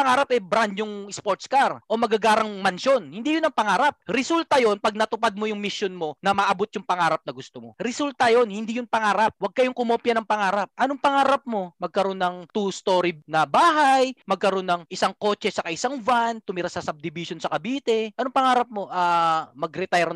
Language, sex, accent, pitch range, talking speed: Filipino, male, native, 190-265 Hz, 190 wpm